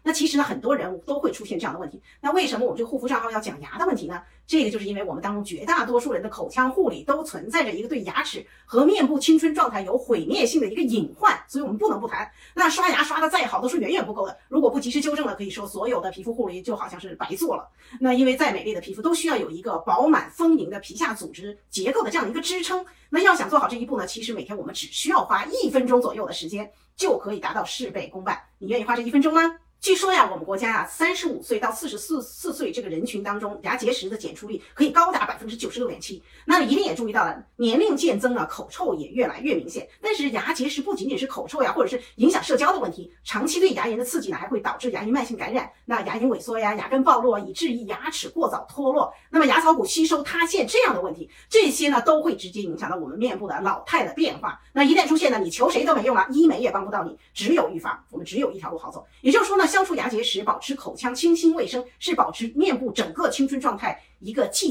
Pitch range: 240-335 Hz